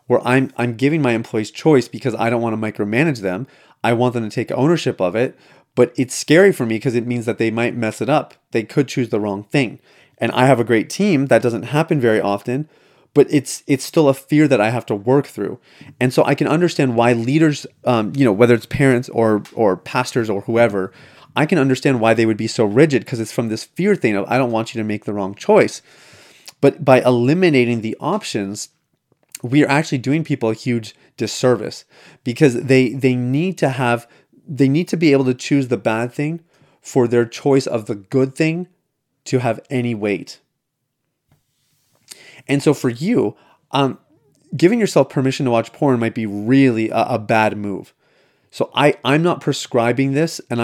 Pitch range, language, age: 115-140 Hz, English, 30-49